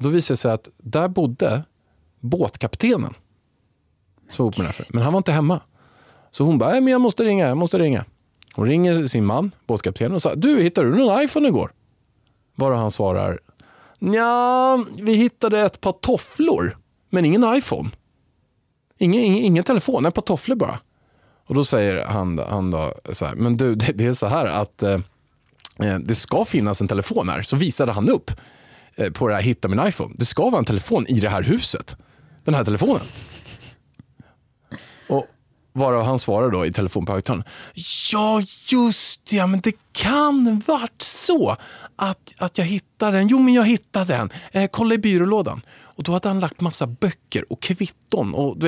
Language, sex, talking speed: Swedish, male, 180 wpm